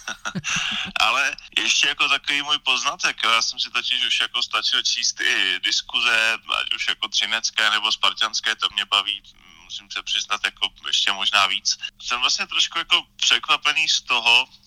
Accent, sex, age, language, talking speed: native, male, 20-39, Czech, 160 wpm